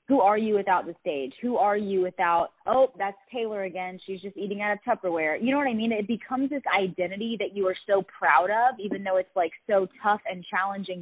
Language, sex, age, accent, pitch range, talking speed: English, female, 20-39, American, 180-230 Hz, 235 wpm